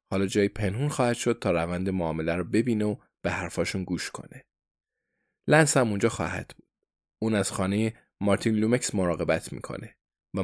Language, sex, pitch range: Persian, male, 100-125 Hz